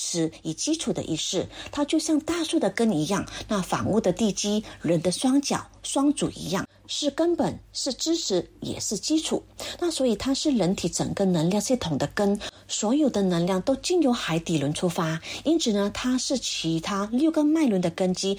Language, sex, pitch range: Chinese, female, 180-280 Hz